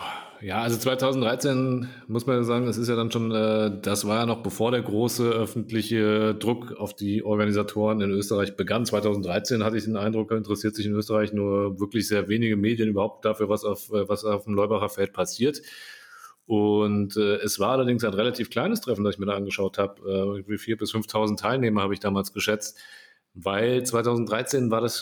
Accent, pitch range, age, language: German, 100-115 Hz, 30-49, German